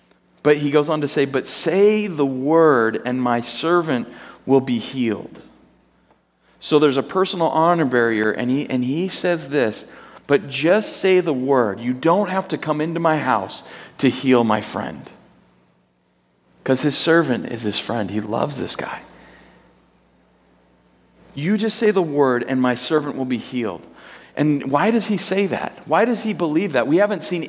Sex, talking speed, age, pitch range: male, 175 wpm, 40-59, 130-185 Hz